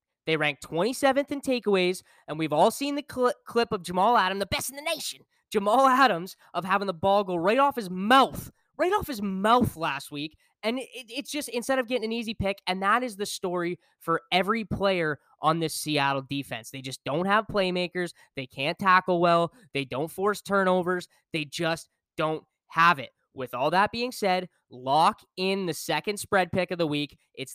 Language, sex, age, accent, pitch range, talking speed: English, male, 10-29, American, 155-210 Hz, 200 wpm